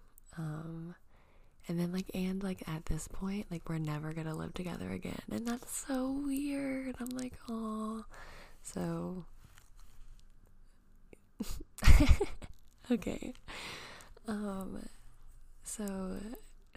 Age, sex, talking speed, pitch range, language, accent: 20-39, female, 95 wpm, 150-175 Hz, English, American